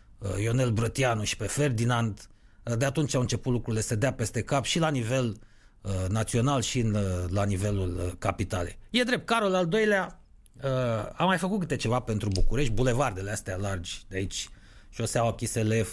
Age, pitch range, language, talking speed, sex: 30-49, 105-135 Hz, Romanian, 175 wpm, male